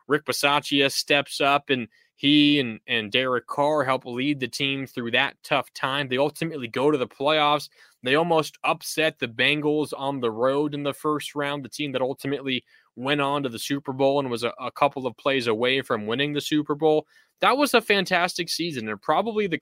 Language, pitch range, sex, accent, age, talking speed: English, 130-160 Hz, male, American, 20-39, 205 wpm